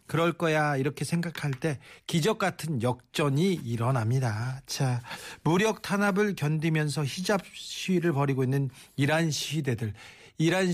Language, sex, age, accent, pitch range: Korean, male, 40-59, native, 130-175 Hz